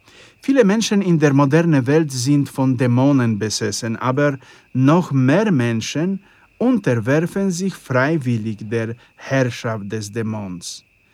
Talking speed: 115 wpm